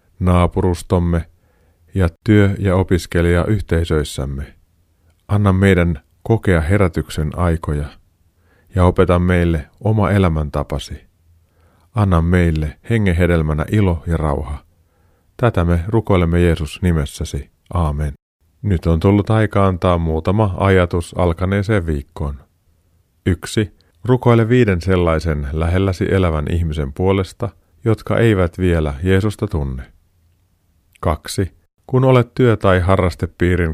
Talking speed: 100 wpm